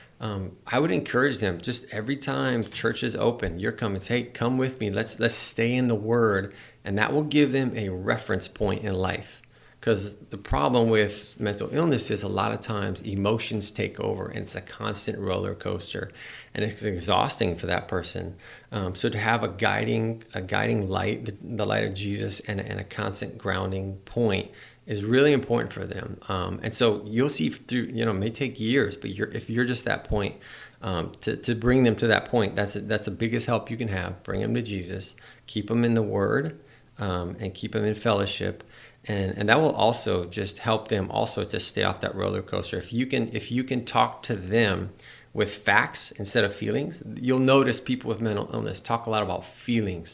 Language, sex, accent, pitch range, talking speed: English, male, American, 100-120 Hz, 210 wpm